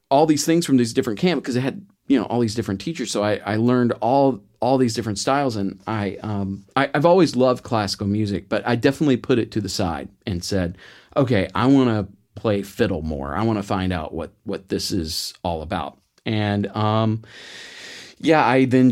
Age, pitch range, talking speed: 40-59, 105-130 Hz, 215 wpm